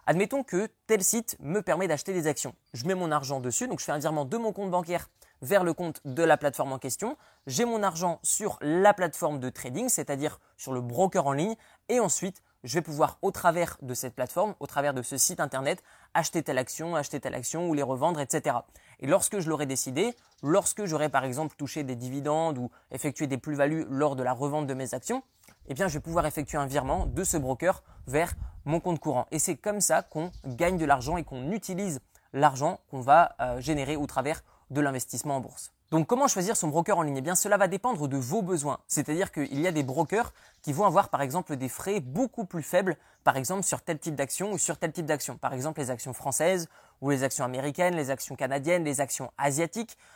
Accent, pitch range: French, 140-180 Hz